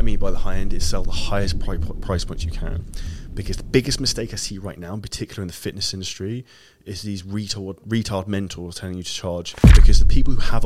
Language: English